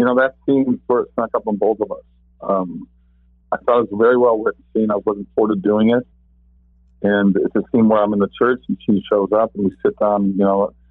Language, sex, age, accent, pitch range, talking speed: English, male, 50-69, American, 85-110 Hz, 265 wpm